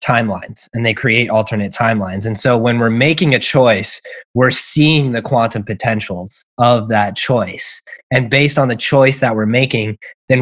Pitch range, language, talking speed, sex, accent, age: 110-140 Hz, English, 175 wpm, male, American, 20-39